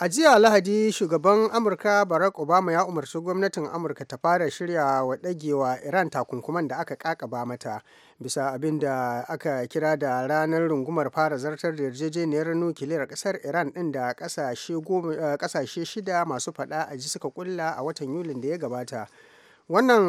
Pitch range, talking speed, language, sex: 140-180 Hz, 150 wpm, English, male